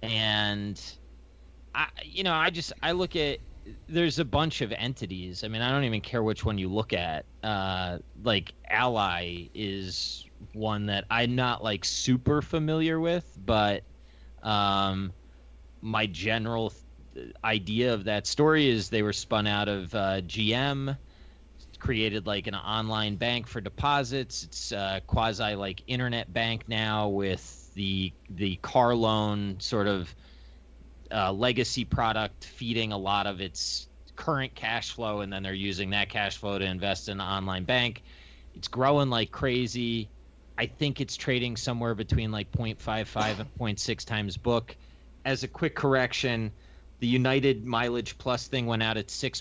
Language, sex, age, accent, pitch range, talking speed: English, male, 30-49, American, 95-120 Hz, 155 wpm